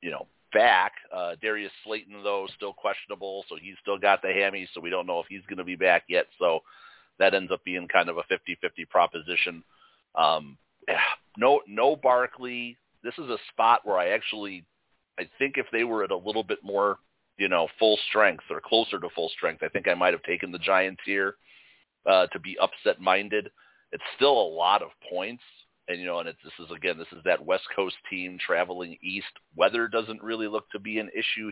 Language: English